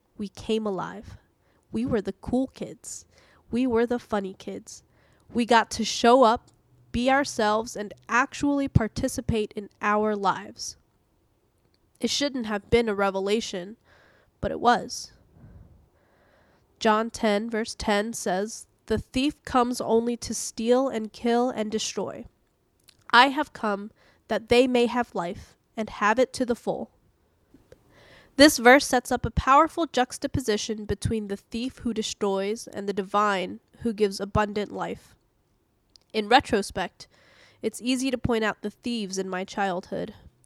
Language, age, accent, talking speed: English, 10-29, American, 140 wpm